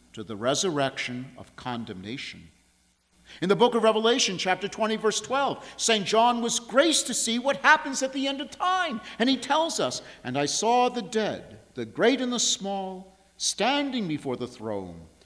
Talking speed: 175 wpm